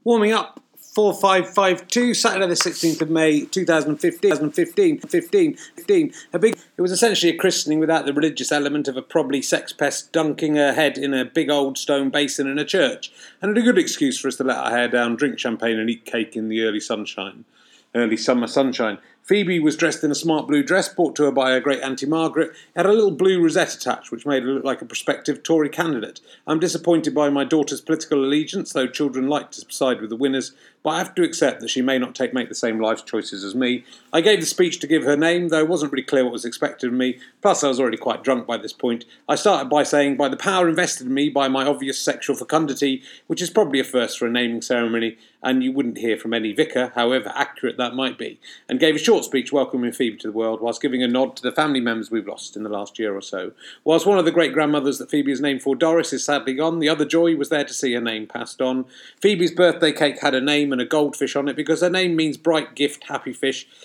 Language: English